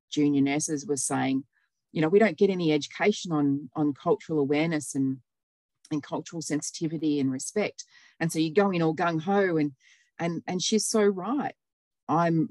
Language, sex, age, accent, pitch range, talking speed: English, female, 30-49, Australian, 135-160 Hz, 170 wpm